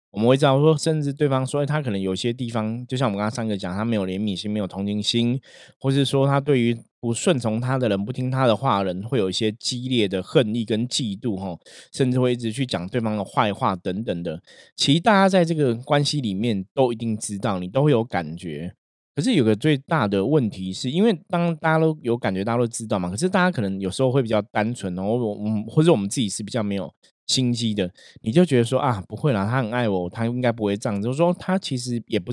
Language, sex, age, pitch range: Chinese, male, 20-39, 100-130 Hz